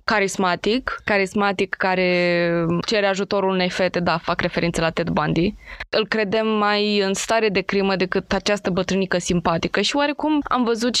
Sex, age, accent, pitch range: female, 20-39, native, 180-220 Hz